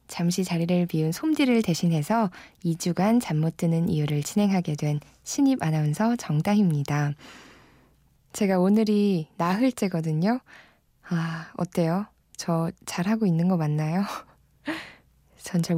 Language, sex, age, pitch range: Korean, female, 20-39, 170-215 Hz